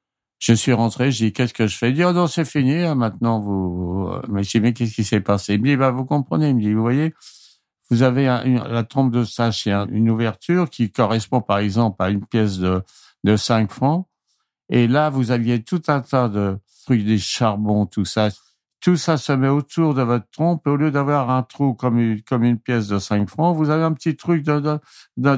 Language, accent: French, French